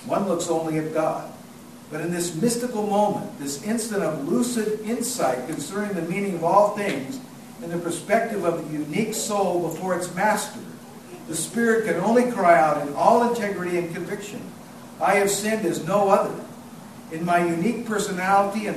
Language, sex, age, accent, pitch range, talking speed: English, male, 50-69, American, 165-210 Hz, 170 wpm